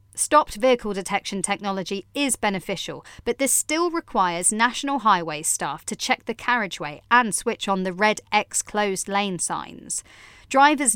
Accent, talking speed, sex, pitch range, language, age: British, 150 wpm, female, 185-245 Hz, English, 40-59